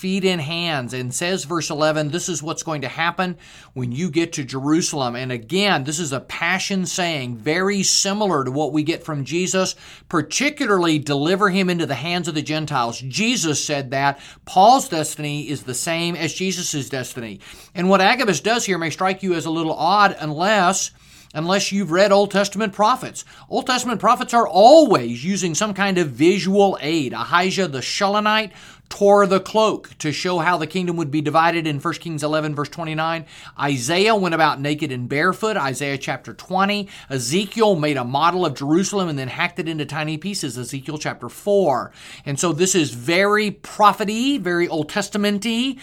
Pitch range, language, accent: 150-195 Hz, English, American